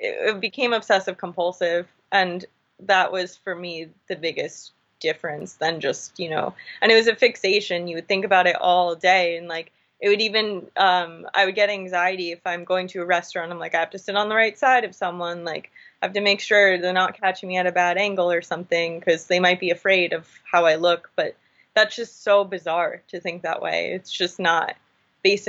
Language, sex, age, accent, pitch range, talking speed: English, female, 20-39, American, 175-205 Hz, 220 wpm